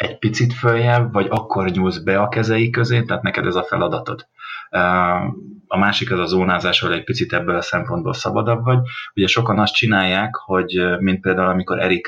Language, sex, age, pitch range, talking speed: Hungarian, male, 30-49, 95-115 Hz, 185 wpm